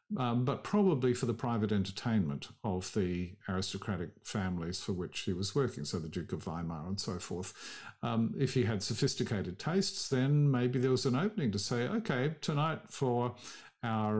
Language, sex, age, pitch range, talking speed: English, male, 50-69, 105-130 Hz, 180 wpm